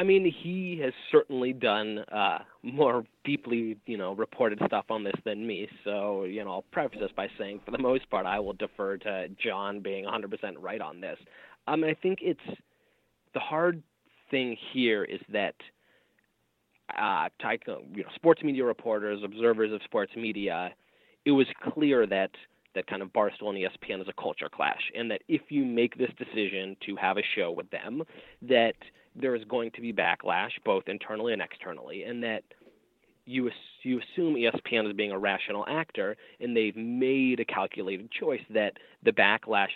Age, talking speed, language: 30-49, 180 wpm, English